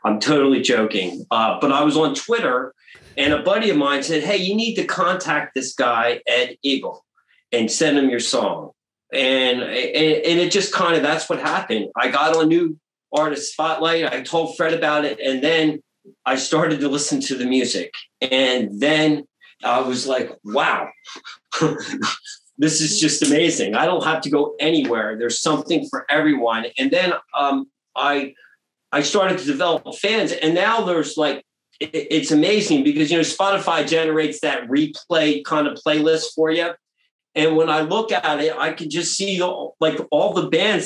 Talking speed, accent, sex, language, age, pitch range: 175 wpm, American, male, English, 40-59, 140-170 Hz